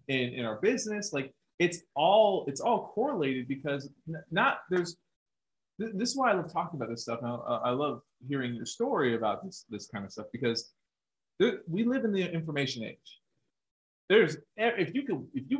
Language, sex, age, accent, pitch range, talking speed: English, male, 30-49, American, 135-205 Hz, 180 wpm